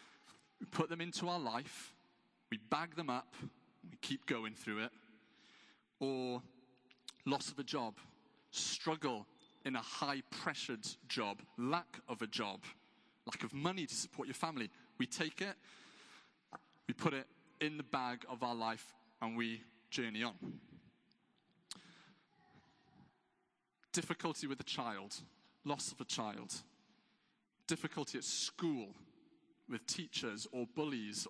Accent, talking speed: British, 130 wpm